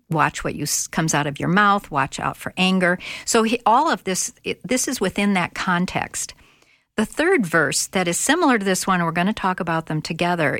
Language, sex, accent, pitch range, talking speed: English, female, American, 160-220 Hz, 220 wpm